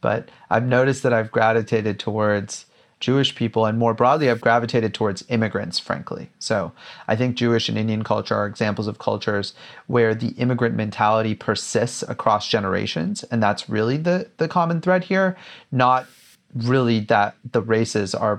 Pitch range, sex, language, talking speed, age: 105-120 Hz, male, English, 160 wpm, 30-49